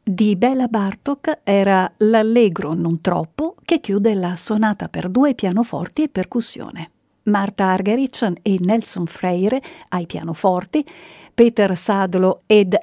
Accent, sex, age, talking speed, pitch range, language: native, female, 50-69, 120 wpm, 180-250 Hz, Italian